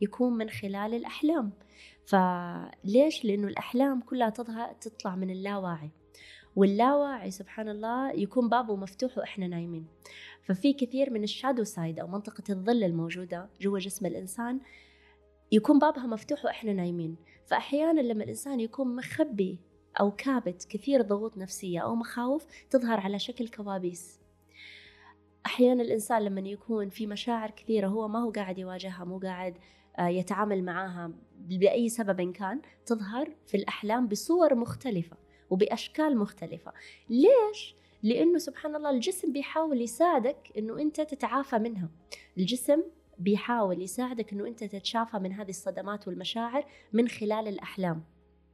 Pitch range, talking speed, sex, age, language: 185-245 Hz, 130 wpm, female, 20-39, Arabic